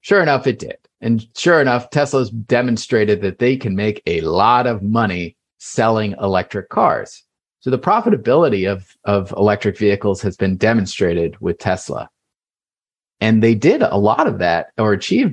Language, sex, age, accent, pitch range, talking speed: English, male, 30-49, American, 100-125 Hz, 160 wpm